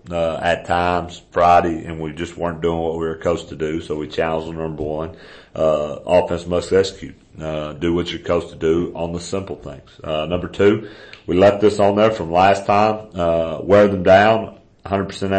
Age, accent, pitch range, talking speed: 40-59, American, 80-95 Hz, 205 wpm